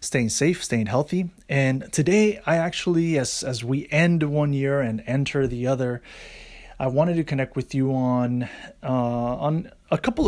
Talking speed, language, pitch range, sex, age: 170 wpm, English, 125-145 Hz, male, 30-49